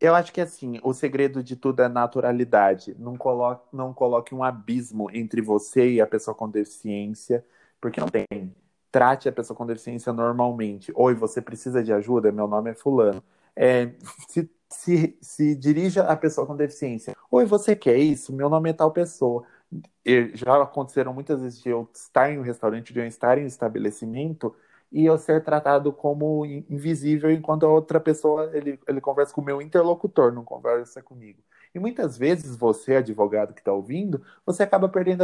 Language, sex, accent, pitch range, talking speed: Portuguese, male, Brazilian, 120-155 Hz, 180 wpm